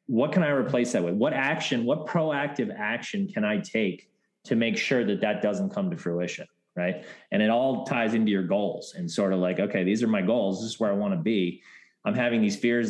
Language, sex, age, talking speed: English, male, 30-49, 235 wpm